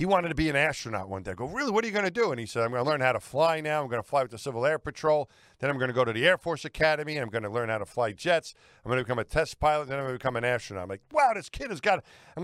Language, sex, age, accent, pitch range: English, male, 50-69, American, 130-175 Hz